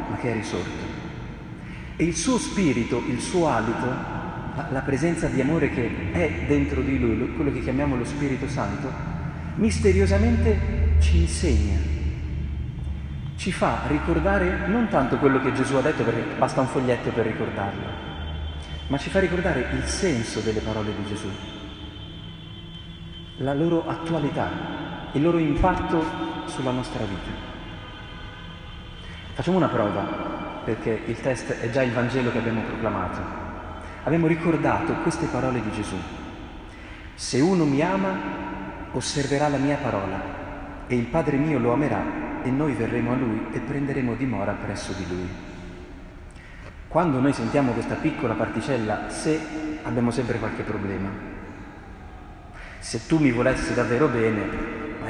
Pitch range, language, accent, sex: 90-135 Hz, Italian, native, male